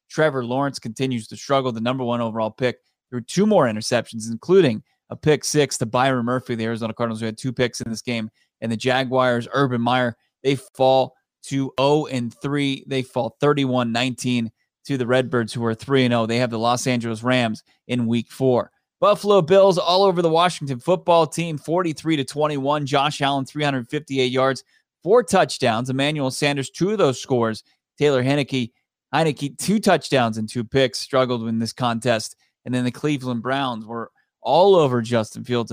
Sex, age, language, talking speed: male, 20-39, English, 180 wpm